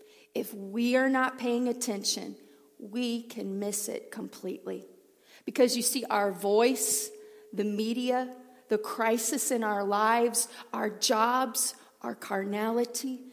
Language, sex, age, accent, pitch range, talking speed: English, female, 40-59, American, 205-245 Hz, 120 wpm